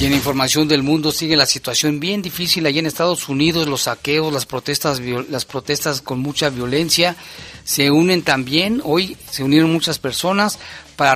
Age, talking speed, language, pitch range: 40-59, 170 wpm, Spanish, 135-165 Hz